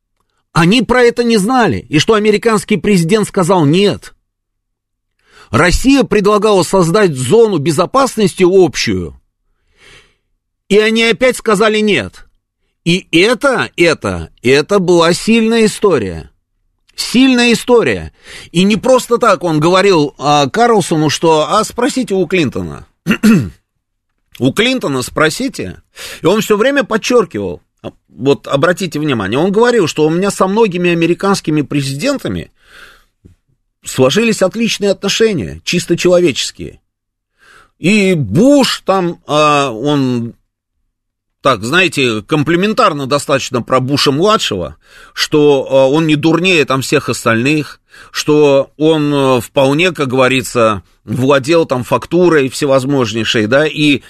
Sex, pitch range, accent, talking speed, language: male, 130-205 Hz, native, 105 wpm, Russian